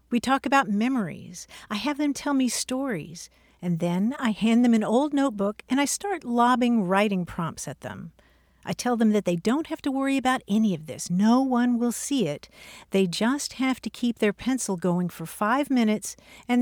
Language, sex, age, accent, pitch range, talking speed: English, female, 50-69, American, 195-265 Hz, 200 wpm